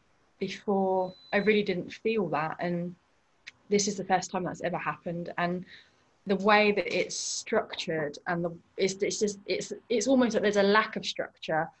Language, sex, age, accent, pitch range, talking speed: English, female, 20-39, British, 170-195 Hz, 180 wpm